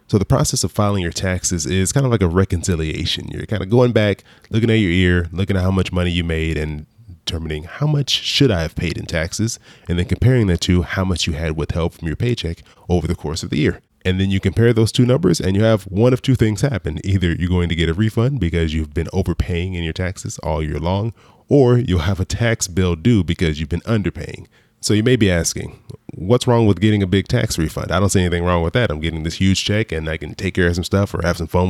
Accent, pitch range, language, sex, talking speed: American, 85-110 Hz, English, male, 260 wpm